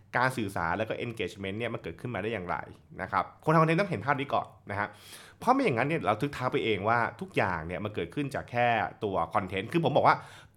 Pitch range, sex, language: 105-155 Hz, male, Thai